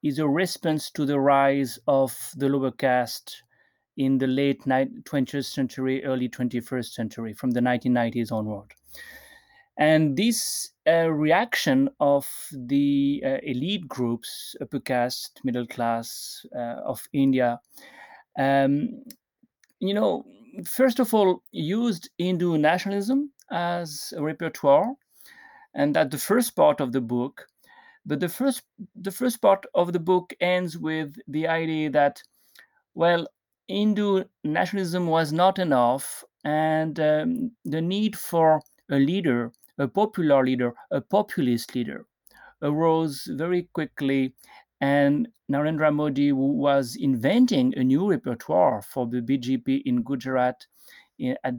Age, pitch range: 30-49, 130-190 Hz